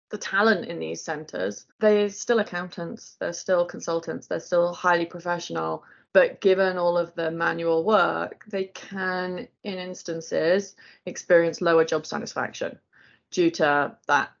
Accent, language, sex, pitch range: British, English, female, 155-185 Hz